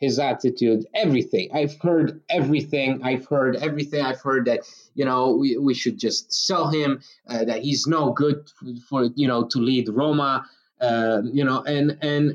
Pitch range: 125-160 Hz